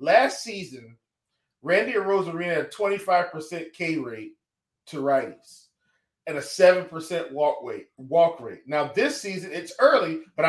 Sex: male